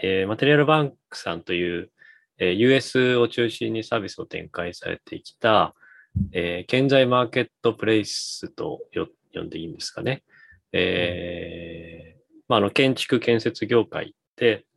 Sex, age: male, 20-39